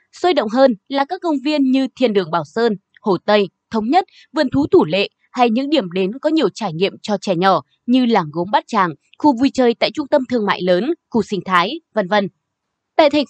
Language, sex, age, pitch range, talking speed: Vietnamese, female, 20-39, 195-295 Hz, 235 wpm